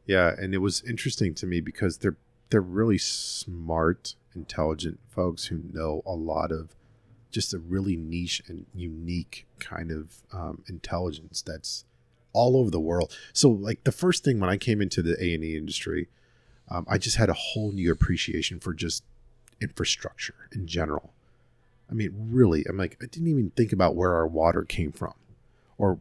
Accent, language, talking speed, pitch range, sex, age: American, English, 175 wpm, 85-115 Hz, male, 40-59